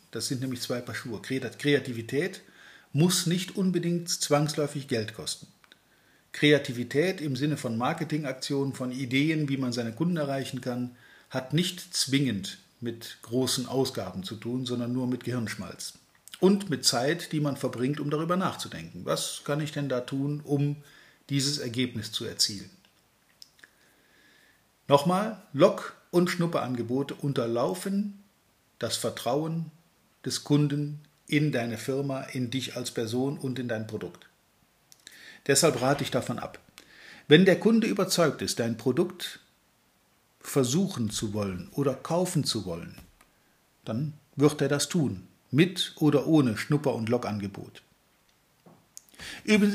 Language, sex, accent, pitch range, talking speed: German, male, German, 125-160 Hz, 130 wpm